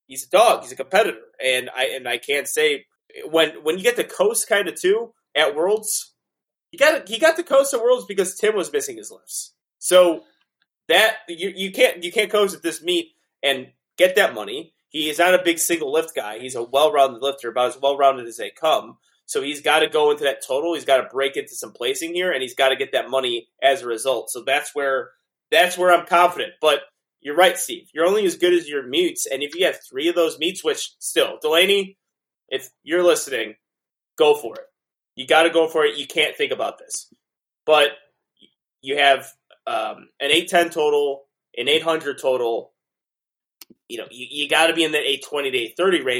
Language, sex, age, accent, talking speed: English, male, 30-49, American, 215 wpm